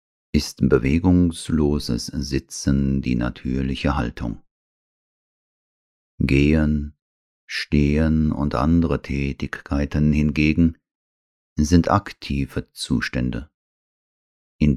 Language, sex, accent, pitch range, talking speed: German, male, German, 65-80 Hz, 65 wpm